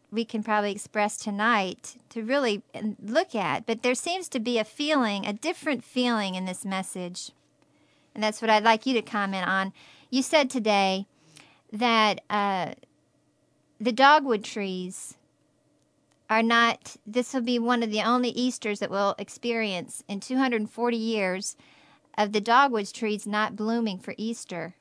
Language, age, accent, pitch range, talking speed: English, 40-59, American, 200-235 Hz, 150 wpm